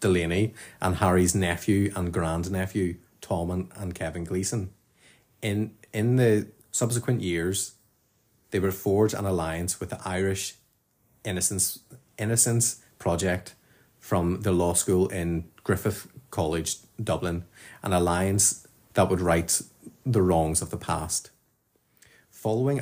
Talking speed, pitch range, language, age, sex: 120 wpm, 90-110 Hz, English, 30-49, male